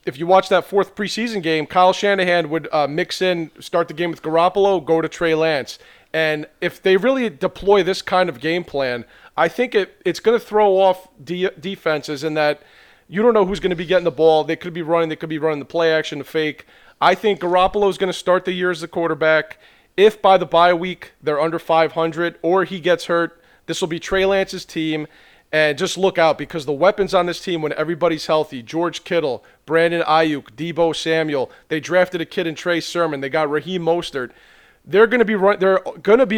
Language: English